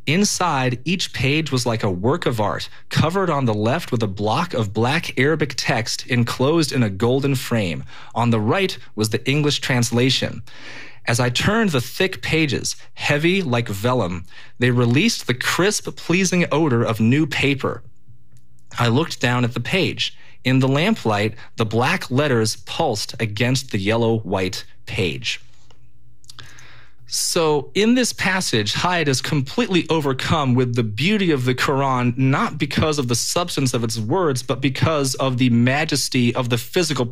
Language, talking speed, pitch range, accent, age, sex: English, 155 wpm, 115-145 Hz, American, 30-49, male